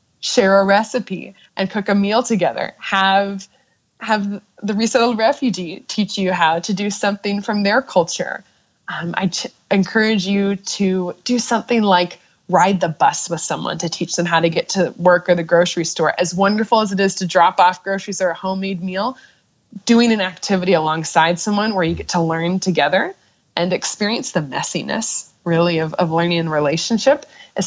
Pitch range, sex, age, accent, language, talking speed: 170-200 Hz, female, 20-39, American, English, 180 wpm